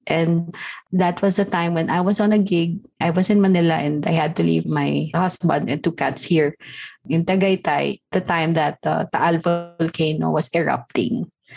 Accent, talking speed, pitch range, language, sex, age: Filipino, 185 wpm, 165-220 Hz, English, female, 20-39